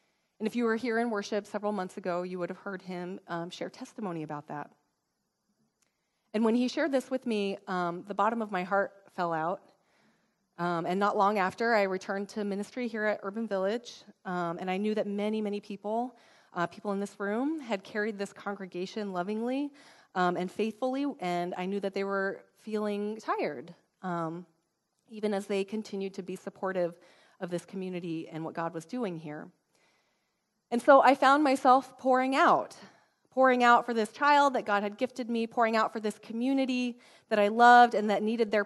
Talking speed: 190 wpm